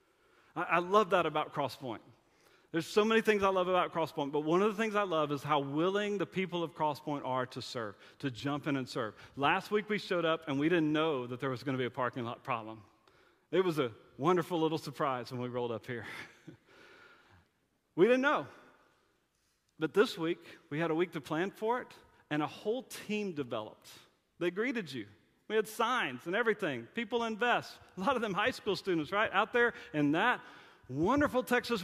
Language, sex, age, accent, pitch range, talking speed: English, male, 40-59, American, 145-205 Hz, 205 wpm